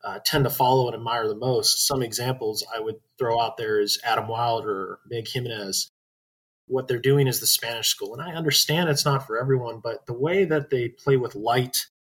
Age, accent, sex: 20-39, American, male